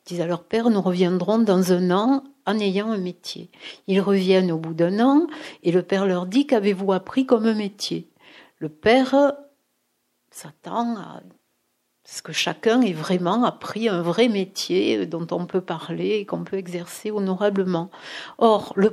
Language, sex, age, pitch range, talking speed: French, female, 60-79, 170-220 Hz, 180 wpm